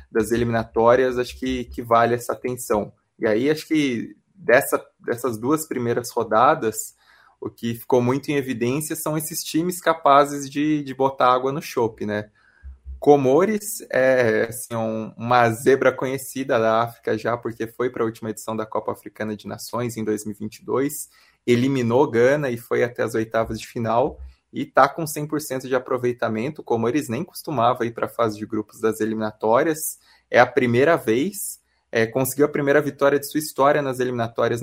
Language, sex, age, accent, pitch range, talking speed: Portuguese, male, 20-39, Brazilian, 110-135 Hz, 165 wpm